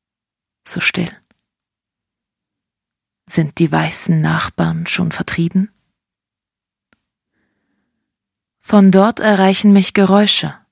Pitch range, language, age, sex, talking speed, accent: 165-200 Hz, German, 30-49, female, 75 wpm, German